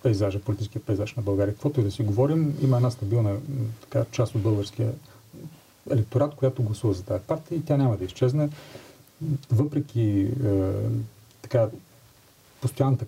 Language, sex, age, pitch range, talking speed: Bulgarian, male, 40-59, 110-135 Hz, 145 wpm